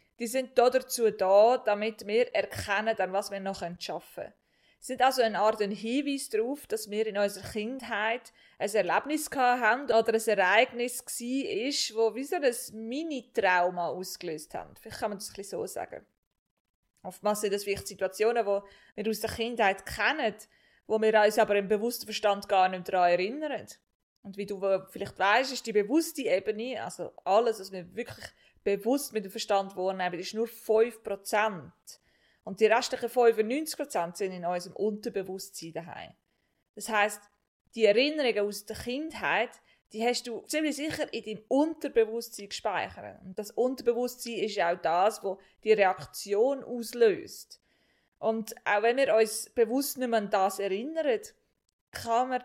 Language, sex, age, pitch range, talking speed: German, female, 20-39, 200-245 Hz, 160 wpm